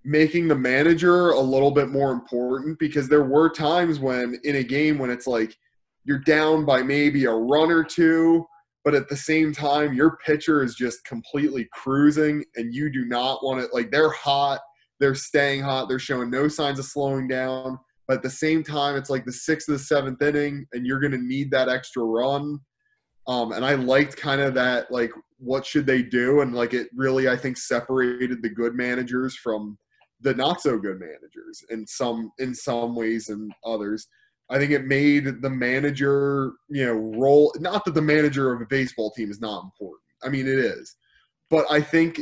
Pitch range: 125-150 Hz